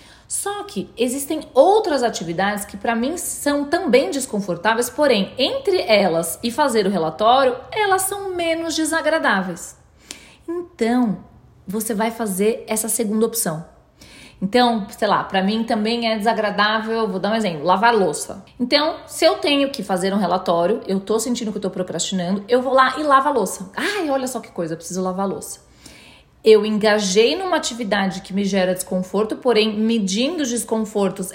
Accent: Brazilian